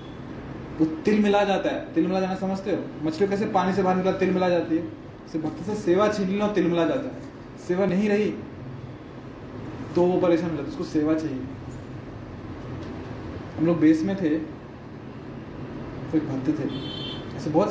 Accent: native